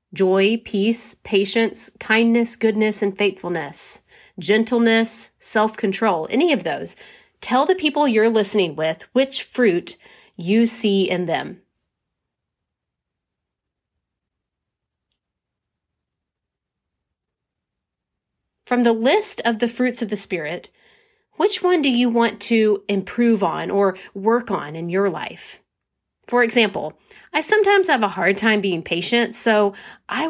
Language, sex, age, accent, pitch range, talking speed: English, female, 30-49, American, 190-245 Hz, 115 wpm